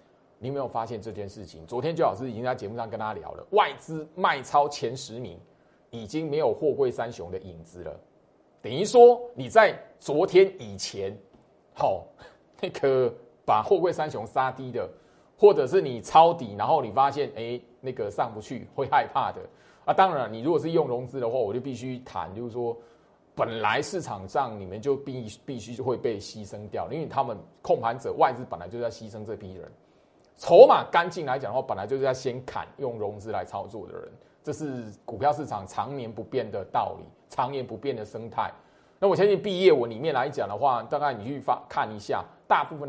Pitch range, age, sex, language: 115-165 Hz, 20-39, male, Chinese